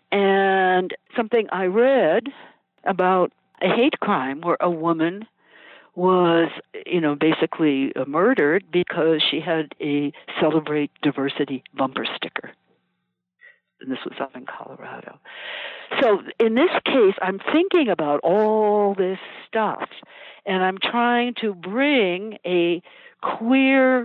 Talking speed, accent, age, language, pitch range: 115 wpm, American, 60-79, English, 170-240 Hz